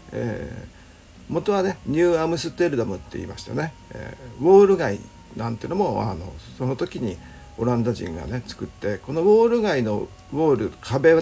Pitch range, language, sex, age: 95-155 Hz, Japanese, male, 50-69